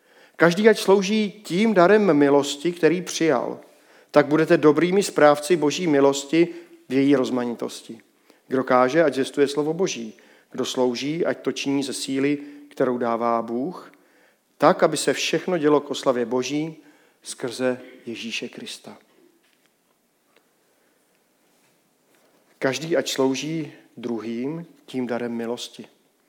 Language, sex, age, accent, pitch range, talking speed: Czech, male, 40-59, native, 130-165 Hz, 115 wpm